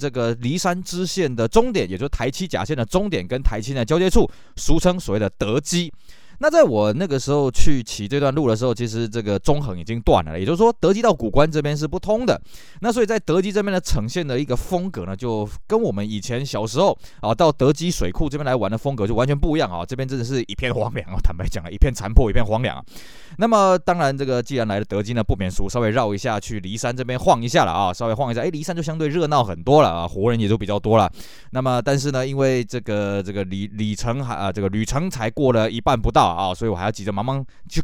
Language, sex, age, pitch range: Chinese, male, 20-39, 110-160 Hz